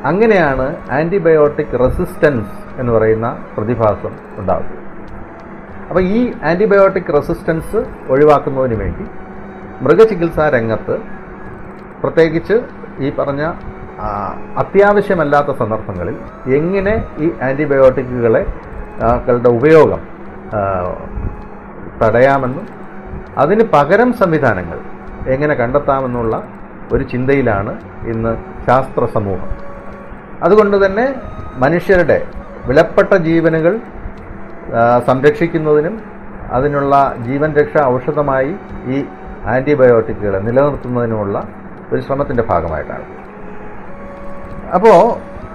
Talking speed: 70 wpm